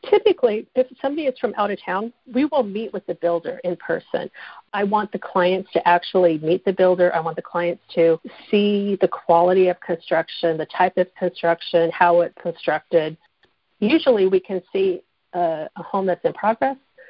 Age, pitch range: 50-69, 175-210 Hz